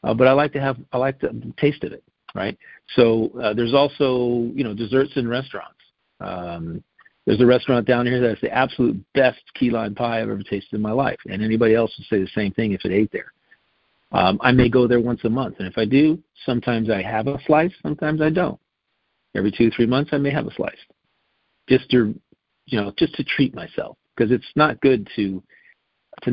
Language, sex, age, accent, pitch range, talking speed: English, male, 50-69, American, 110-130 Hz, 220 wpm